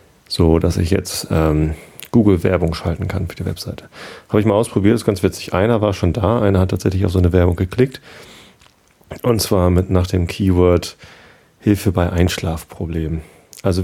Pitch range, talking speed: 85-95 Hz, 180 wpm